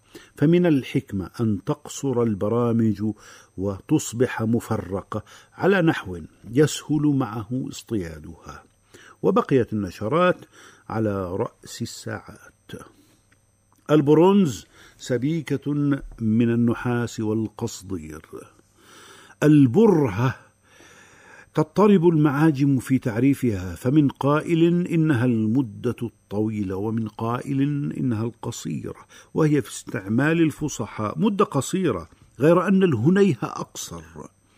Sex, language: male, Arabic